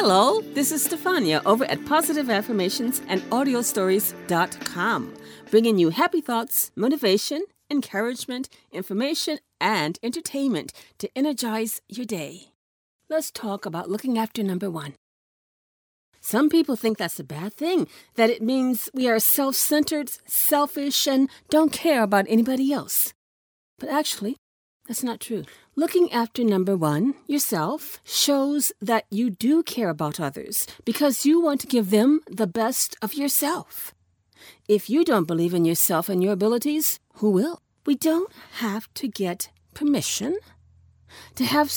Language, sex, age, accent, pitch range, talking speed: English, female, 40-59, American, 210-290 Hz, 140 wpm